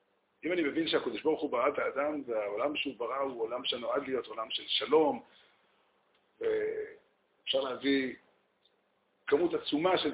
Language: Hebrew